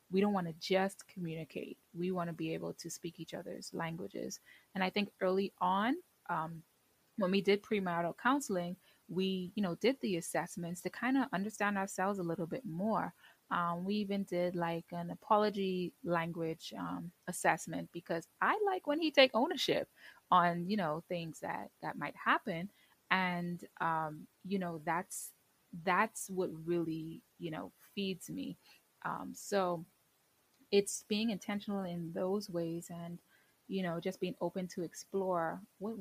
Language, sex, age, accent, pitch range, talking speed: English, female, 20-39, American, 170-205 Hz, 160 wpm